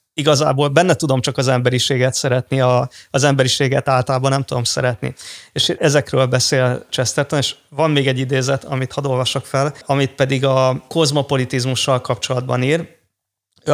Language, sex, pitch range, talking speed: Hungarian, male, 130-150 Hz, 150 wpm